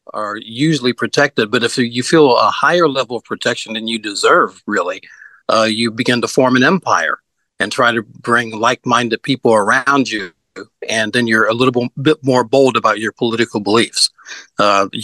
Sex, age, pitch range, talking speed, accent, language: male, 50-69, 110-130 Hz, 180 wpm, American, English